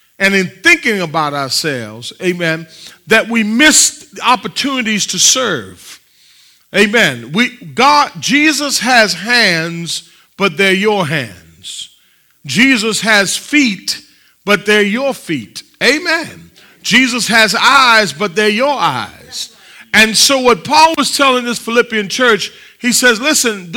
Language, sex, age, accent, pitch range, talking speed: English, male, 40-59, American, 180-260 Hz, 125 wpm